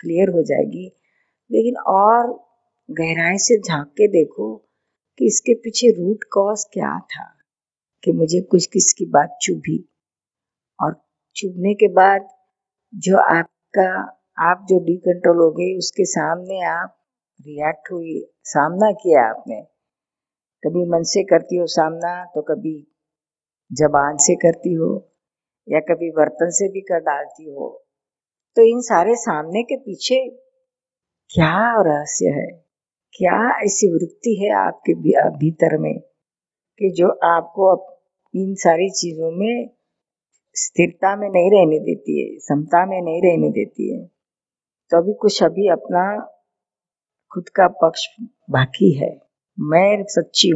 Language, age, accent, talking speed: Hindi, 50-69, native, 130 wpm